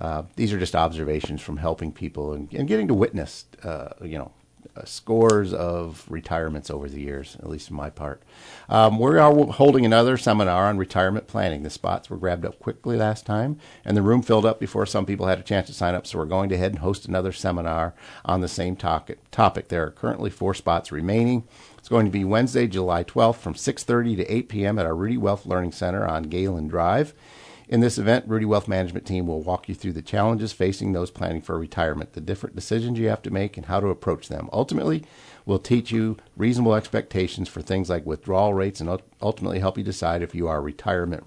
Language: English